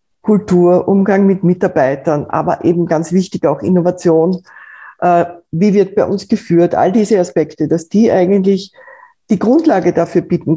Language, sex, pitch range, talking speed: German, female, 165-200 Hz, 140 wpm